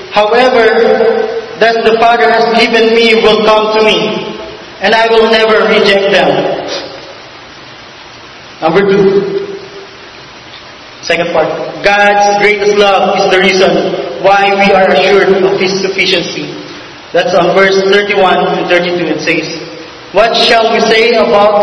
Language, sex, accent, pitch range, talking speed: English, male, Filipino, 190-225 Hz, 130 wpm